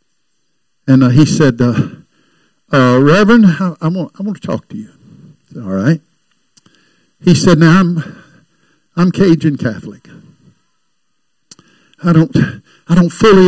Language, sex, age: English, male, 60-79